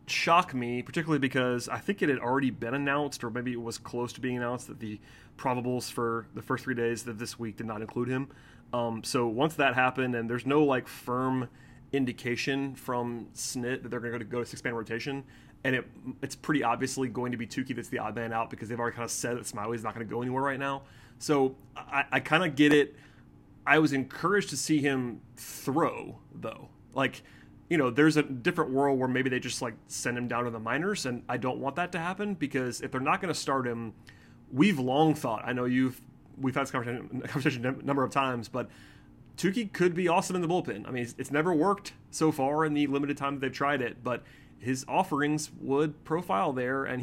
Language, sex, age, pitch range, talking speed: English, male, 30-49, 120-145 Hz, 225 wpm